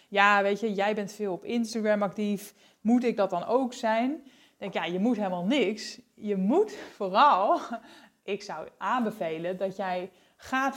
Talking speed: 180 wpm